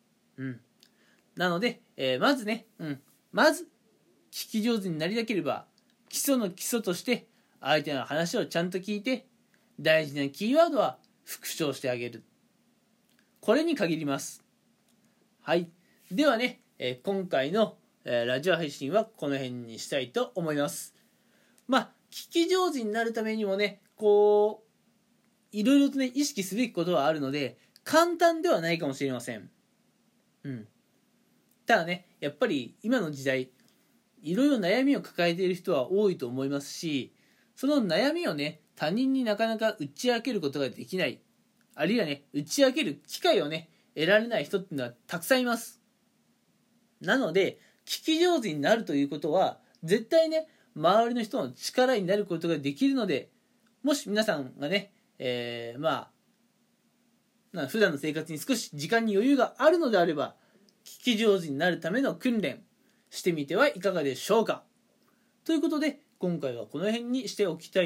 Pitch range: 160-235 Hz